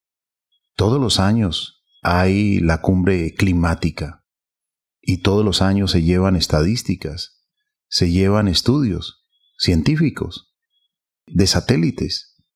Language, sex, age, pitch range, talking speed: Spanish, male, 40-59, 85-105 Hz, 95 wpm